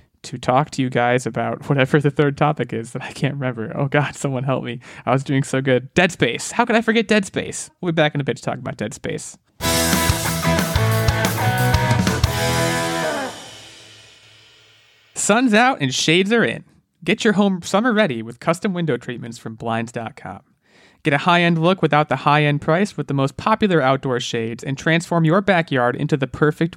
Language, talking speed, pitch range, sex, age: English, 185 wpm, 120-160 Hz, male, 20-39